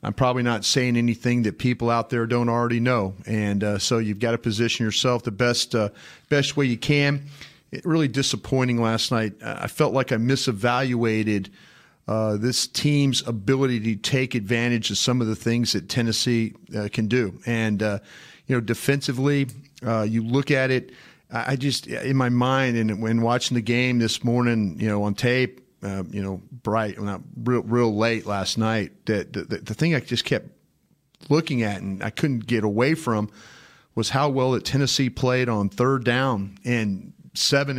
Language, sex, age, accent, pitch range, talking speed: English, male, 40-59, American, 110-130 Hz, 185 wpm